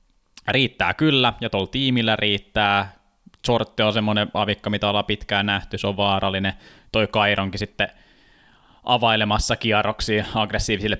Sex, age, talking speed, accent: male, 20-39, 125 wpm, native